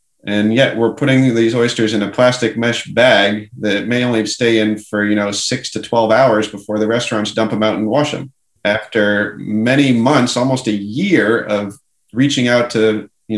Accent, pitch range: American, 110-130 Hz